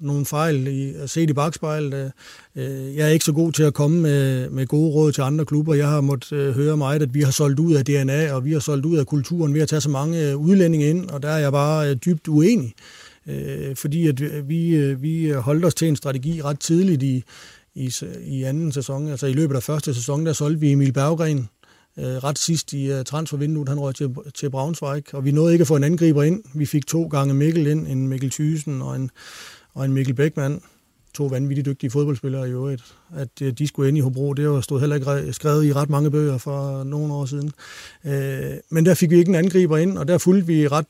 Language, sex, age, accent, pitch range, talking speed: Danish, male, 30-49, native, 140-155 Hz, 220 wpm